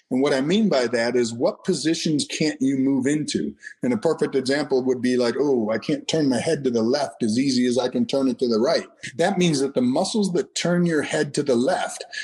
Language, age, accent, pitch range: English, 50-69, American, 130-185 Hz